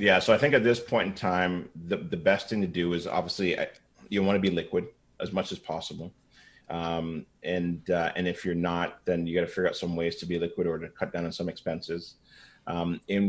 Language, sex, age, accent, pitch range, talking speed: English, male, 30-49, American, 85-95 Hz, 245 wpm